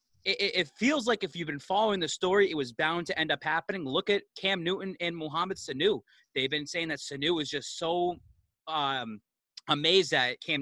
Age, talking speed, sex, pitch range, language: 30-49, 200 wpm, male, 155-190 Hz, English